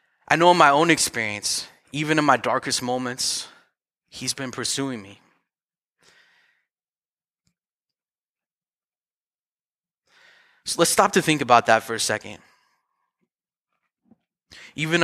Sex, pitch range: male, 125-160 Hz